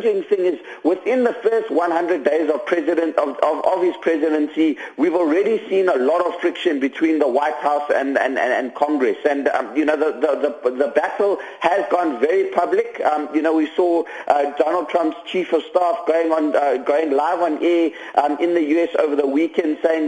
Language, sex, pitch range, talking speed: English, male, 150-220 Hz, 205 wpm